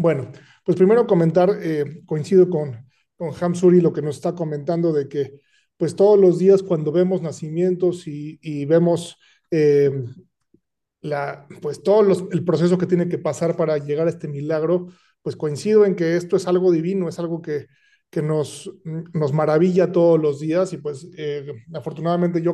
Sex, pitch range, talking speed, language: male, 150-180 Hz, 170 wpm, English